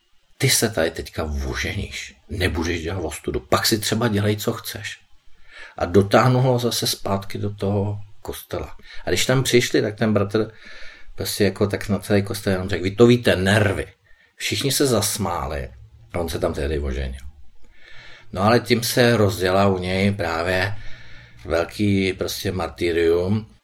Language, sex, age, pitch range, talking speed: Czech, male, 50-69, 100-130 Hz, 150 wpm